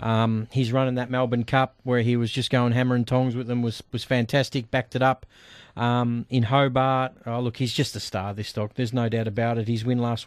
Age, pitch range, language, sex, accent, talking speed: 30-49, 120-140 Hz, English, male, Australian, 240 wpm